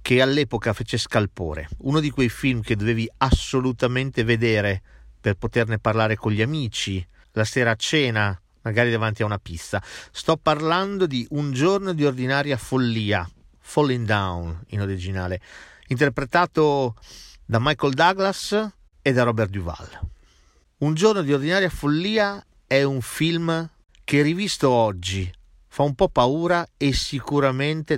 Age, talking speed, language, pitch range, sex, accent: 40-59, 140 wpm, Italian, 110-150 Hz, male, native